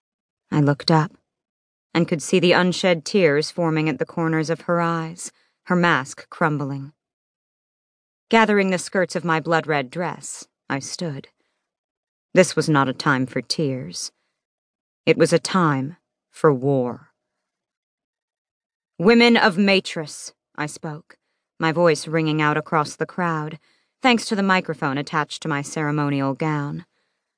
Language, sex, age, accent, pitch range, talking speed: English, female, 40-59, American, 150-180 Hz, 140 wpm